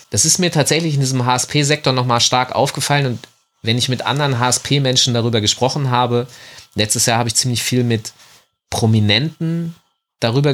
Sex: male